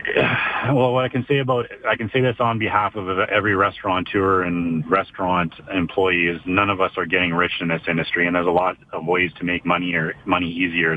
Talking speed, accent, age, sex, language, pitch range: 220 wpm, American, 30-49, male, English, 90-105 Hz